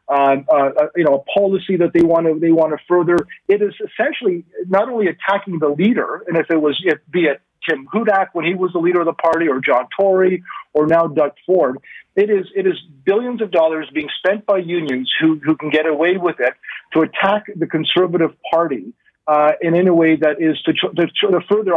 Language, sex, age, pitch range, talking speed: English, male, 40-59, 155-185 Hz, 220 wpm